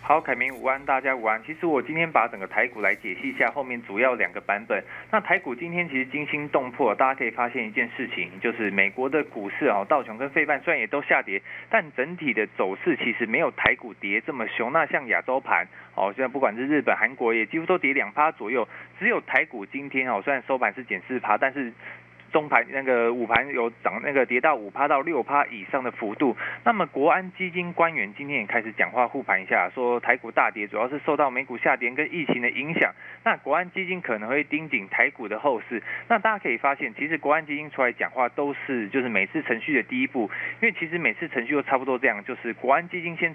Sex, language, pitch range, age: male, Chinese, 120-170 Hz, 20-39